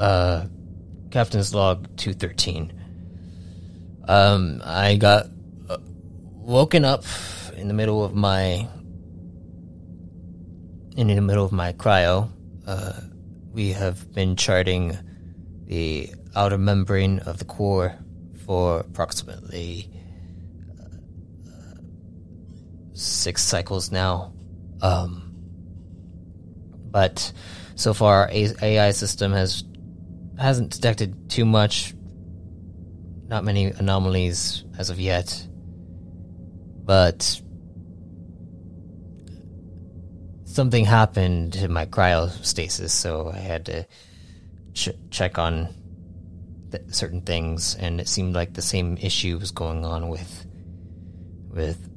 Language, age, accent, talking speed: English, 20-39, American, 95 wpm